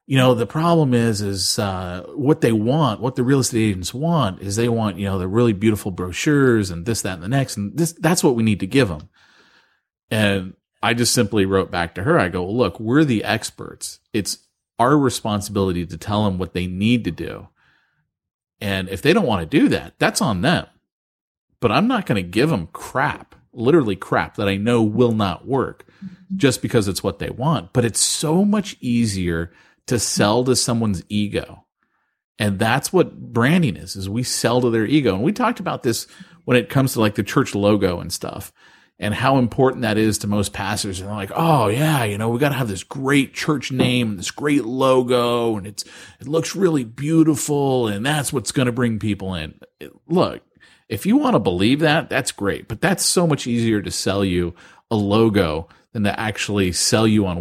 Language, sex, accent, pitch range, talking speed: English, male, American, 100-135 Hz, 210 wpm